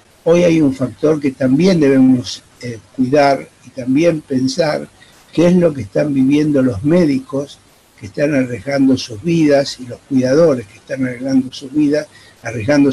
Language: Spanish